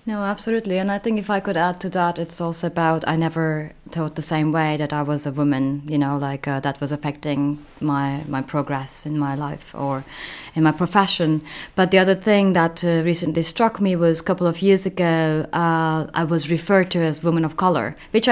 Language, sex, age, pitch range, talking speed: English, female, 20-39, 155-175 Hz, 220 wpm